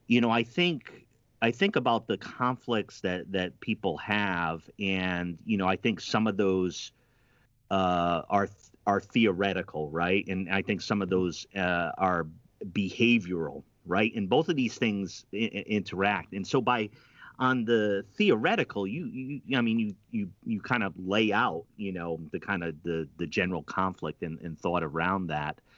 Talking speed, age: 170 wpm, 30-49